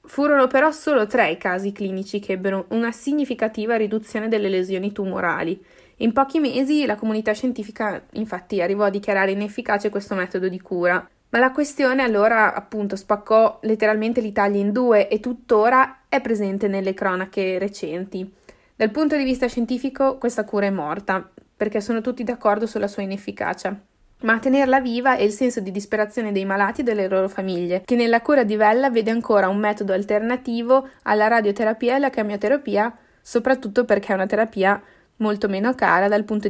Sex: female